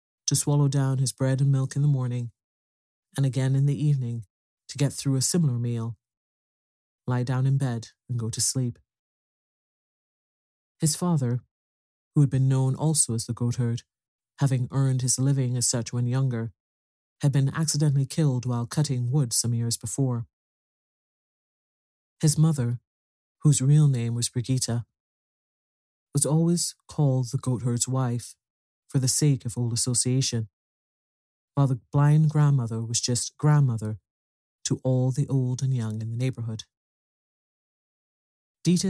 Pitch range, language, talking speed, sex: 115-135 Hz, English, 145 wpm, male